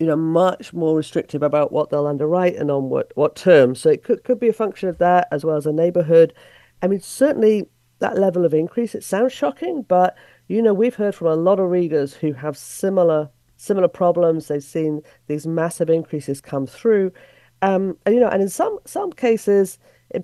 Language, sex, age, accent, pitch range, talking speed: English, female, 50-69, British, 150-190 Hz, 210 wpm